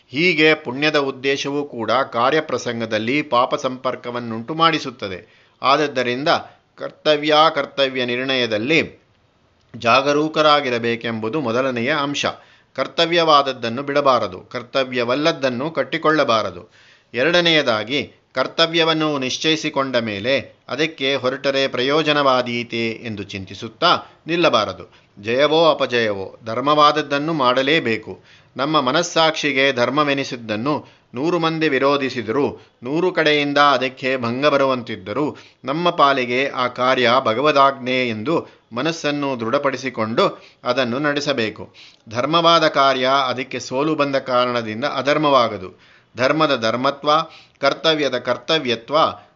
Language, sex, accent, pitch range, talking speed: Kannada, male, native, 125-150 Hz, 80 wpm